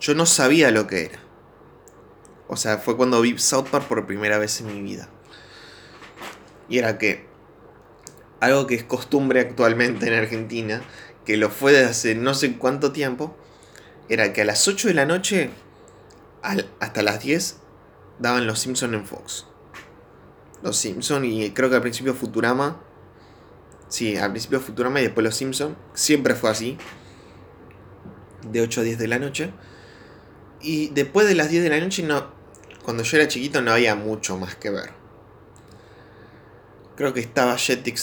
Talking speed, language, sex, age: 165 wpm, Spanish, male, 20-39